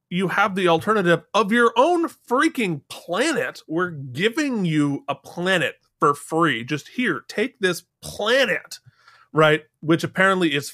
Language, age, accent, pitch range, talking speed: English, 30-49, American, 140-180 Hz, 140 wpm